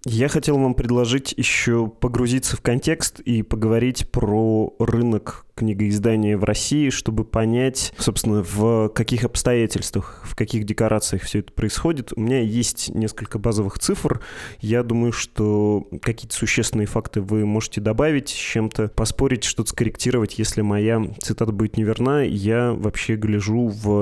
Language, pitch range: Russian, 105-120 Hz